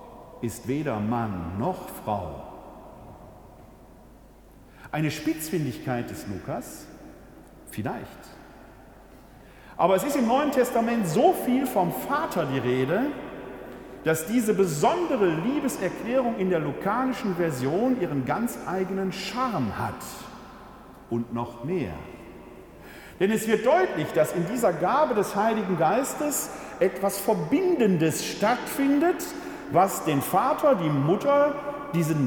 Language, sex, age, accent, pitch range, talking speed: German, male, 50-69, German, 180-265 Hz, 110 wpm